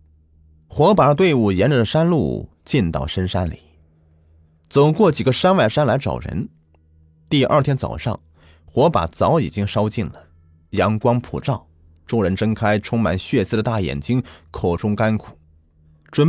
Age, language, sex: 30-49, Chinese, male